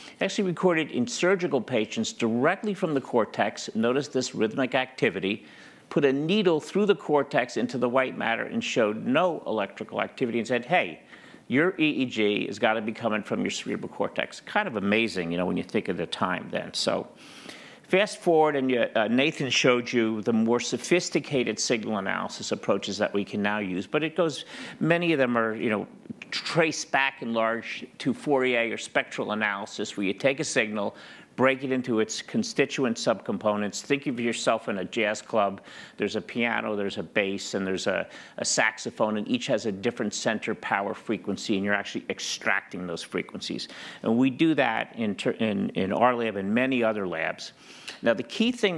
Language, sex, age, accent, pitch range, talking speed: English, male, 50-69, American, 110-155 Hz, 185 wpm